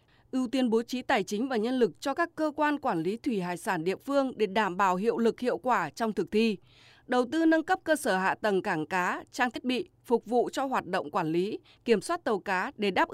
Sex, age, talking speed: female, 20-39, 255 wpm